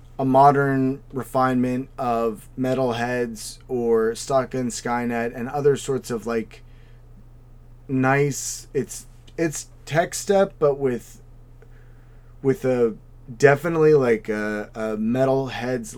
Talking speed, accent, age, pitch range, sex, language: 110 wpm, American, 30-49, 115-130 Hz, male, English